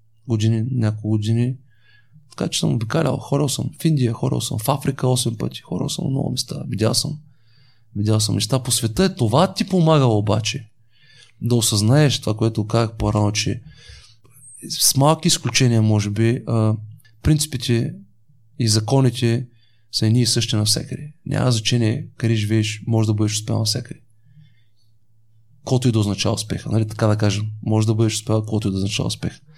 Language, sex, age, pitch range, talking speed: Bulgarian, male, 30-49, 110-135 Hz, 165 wpm